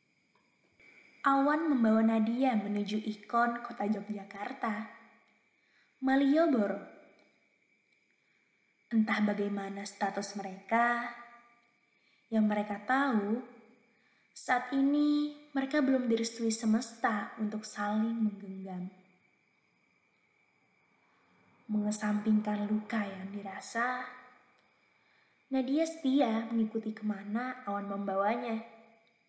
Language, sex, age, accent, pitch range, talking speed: Indonesian, female, 20-39, native, 210-250 Hz, 70 wpm